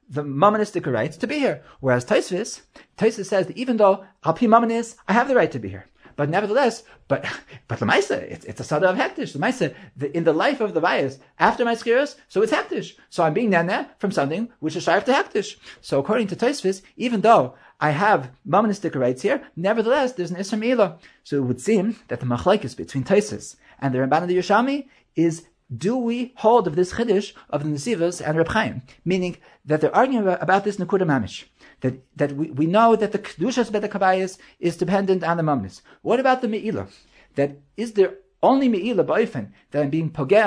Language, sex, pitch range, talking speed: English, male, 150-220 Hz, 205 wpm